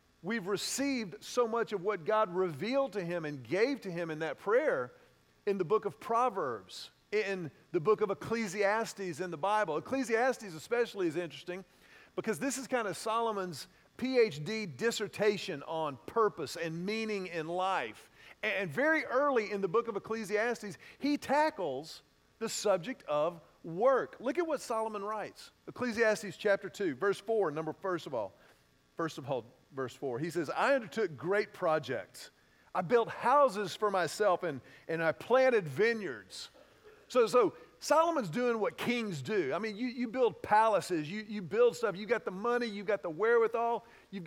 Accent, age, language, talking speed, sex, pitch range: American, 40-59, English, 165 wpm, male, 180-235 Hz